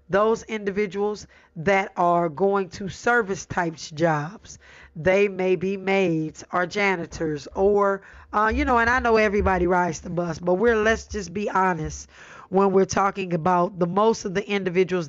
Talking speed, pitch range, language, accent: 165 wpm, 180-220 Hz, English, American